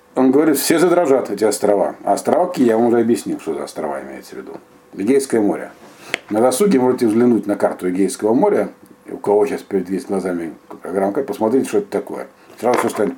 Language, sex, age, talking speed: Russian, male, 50-69, 185 wpm